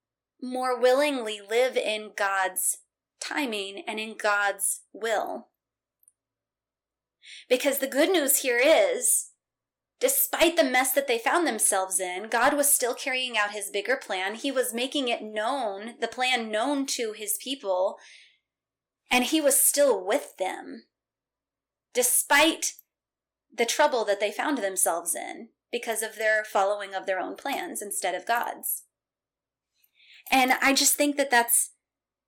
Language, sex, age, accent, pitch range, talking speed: English, female, 20-39, American, 220-285 Hz, 140 wpm